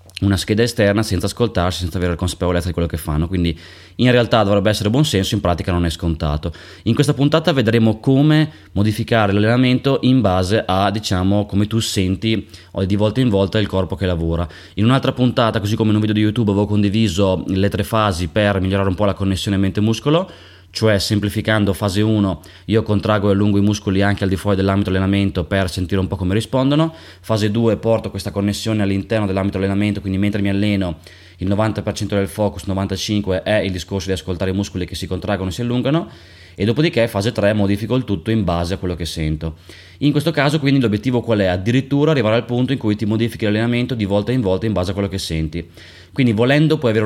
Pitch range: 95-115 Hz